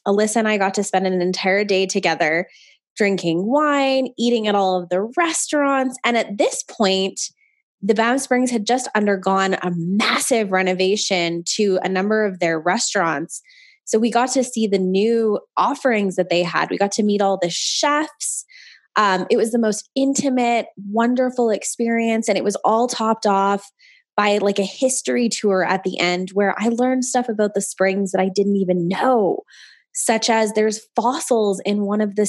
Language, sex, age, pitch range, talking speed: English, female, 20-39, 190-245 Hz, 180 wpm